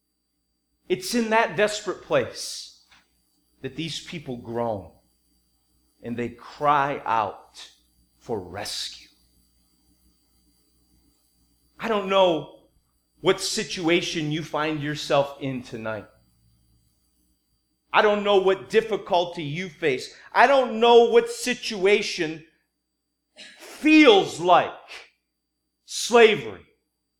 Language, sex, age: English, male, 30-49